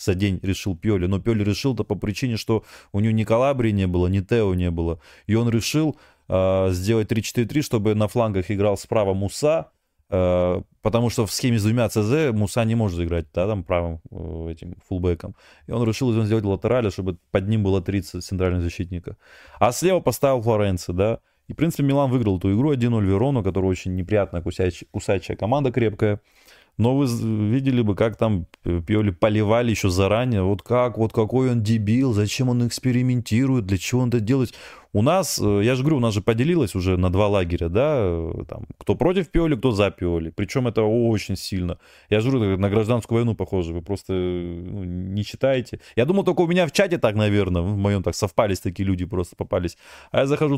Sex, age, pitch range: male, 20-39, 95-120 Hz